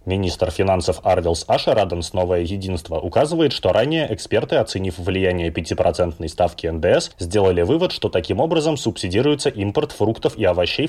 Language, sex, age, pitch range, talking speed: Russian, male, 20-39, 105-140 Hz, 140 wpm